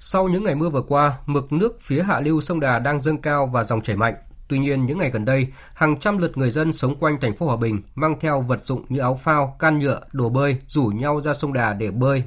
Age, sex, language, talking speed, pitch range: 20-39, male, Vietnamese, 270 wpm, 120-155 Hz